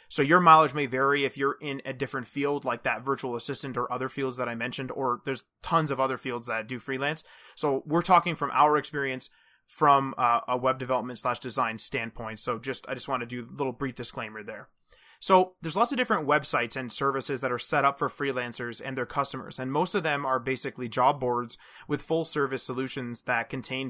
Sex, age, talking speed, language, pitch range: male, 20-39, 215 wpm, English, 125-145 Hz